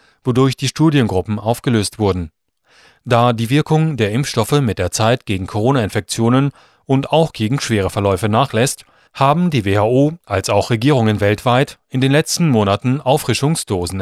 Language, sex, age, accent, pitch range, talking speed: German, male, 30-49, German, 105-140 Hz, 140 wpm